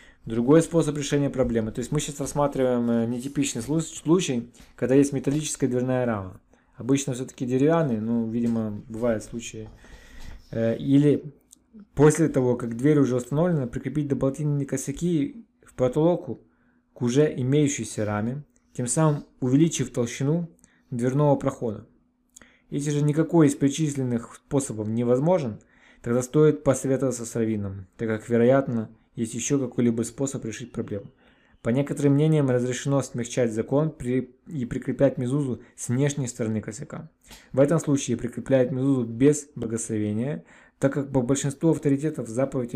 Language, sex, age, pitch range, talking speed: Russian, male, 20-39, 120-145 Hz, 130 wpm